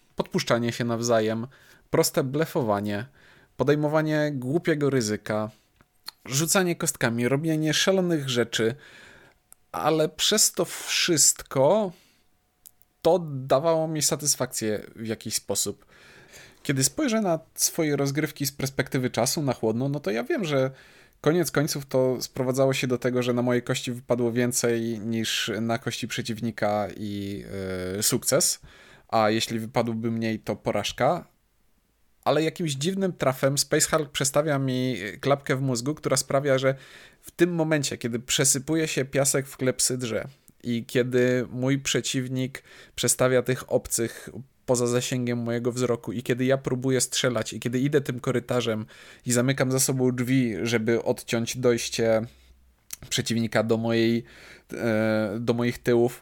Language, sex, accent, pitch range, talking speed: Polish, male, native, 115-145 Hz, 130 wpm